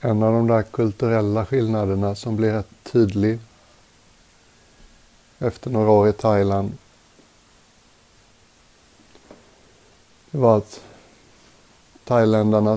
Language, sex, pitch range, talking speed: Swedish, male, 100-115 Hz, 90 wpm